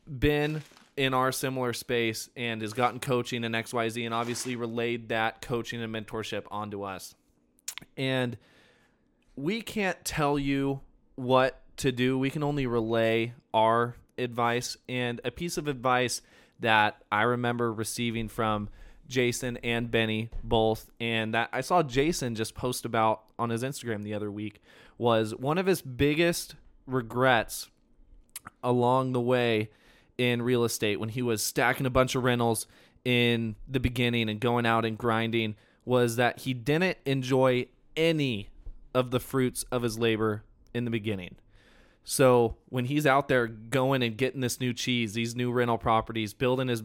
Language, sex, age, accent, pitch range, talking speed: English, male, 20-39, American, 115-130 Hz, 155 wpm